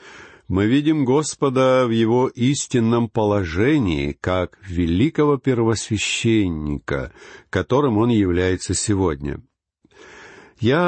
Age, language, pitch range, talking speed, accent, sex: 50-69, Russian, 100-135 Hz, 85 wpm, native, male